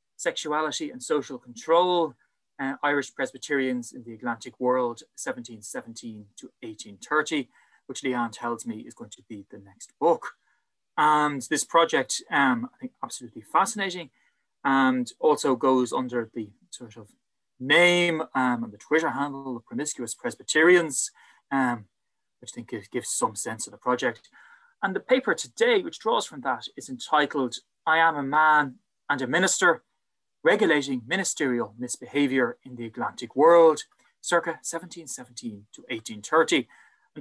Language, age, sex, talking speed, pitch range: English, 20-39, male, 145 wpm, 125-165 Hz